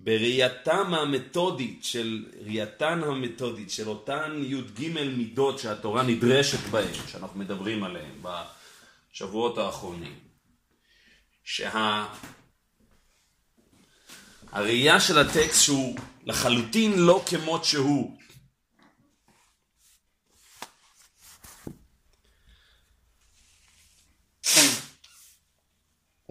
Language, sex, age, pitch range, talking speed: Hebrew, male, 40-59, 95-140 Hz, 55 wpm